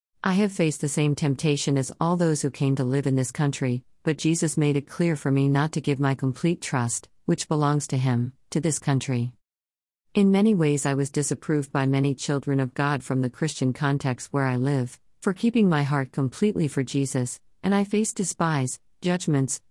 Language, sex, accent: English, female, American